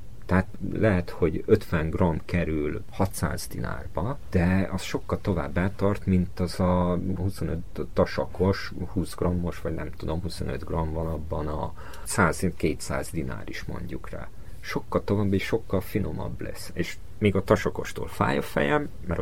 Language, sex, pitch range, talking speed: Hungarian, male, 85-100 Hz, 145 wpm